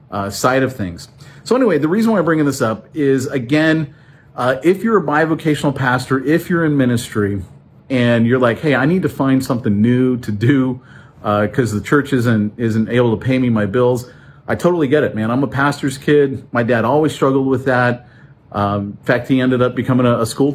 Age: 40-59